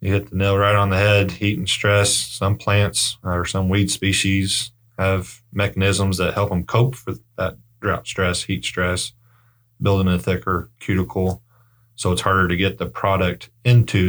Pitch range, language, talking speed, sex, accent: 90-115 Hz, English, 175 wpm, male, American